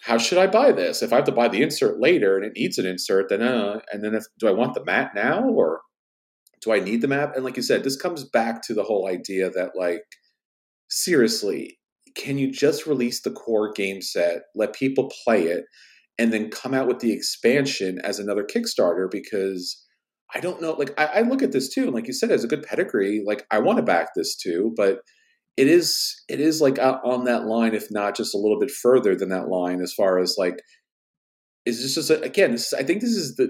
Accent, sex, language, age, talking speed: American, male, English, 40-59, 235 wpm